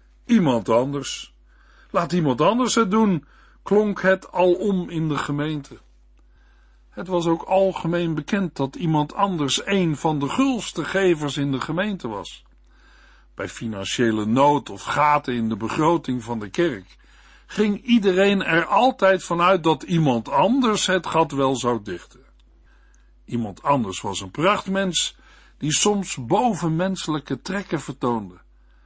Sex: male